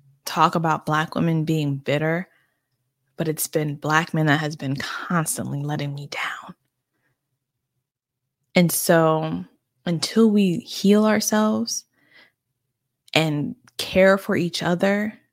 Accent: American